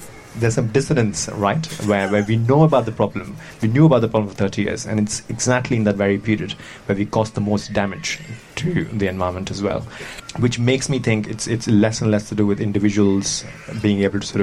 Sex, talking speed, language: male, 225 wpm, English